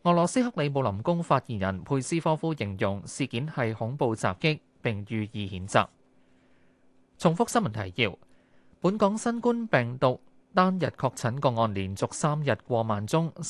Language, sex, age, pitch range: Chinese, male, 20-39, 115-160 Hz